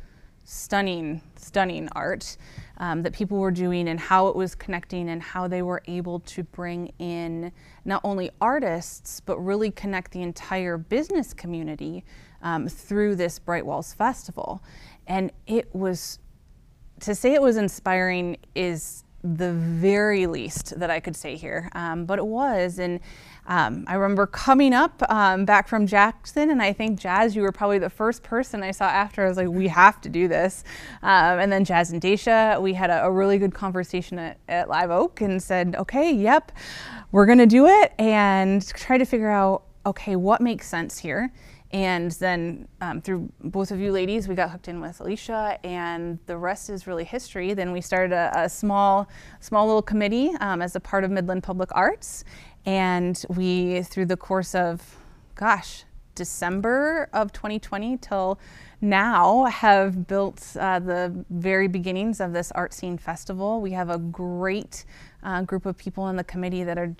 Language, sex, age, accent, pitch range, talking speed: English, female, 20-39, American, 175-205 Hz, 175 wpm